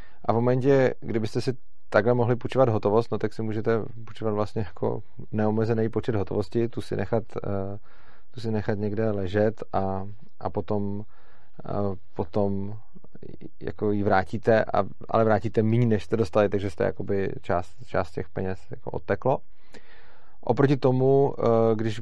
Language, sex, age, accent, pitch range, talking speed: Czech, male, 30-49, native, 105-120 Hz, 135 wpm